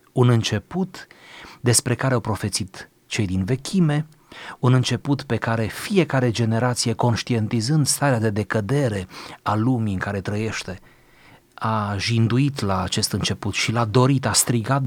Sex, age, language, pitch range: male, 30-49, Romanian, 95-125 Hz